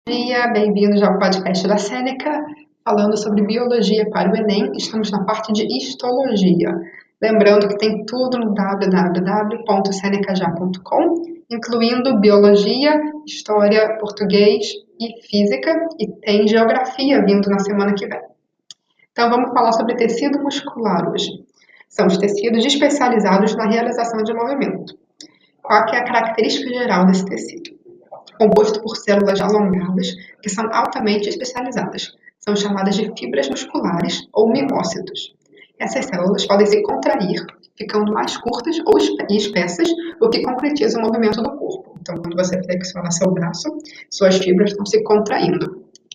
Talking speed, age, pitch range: 135 wpm, 20-39, 200-245 Hz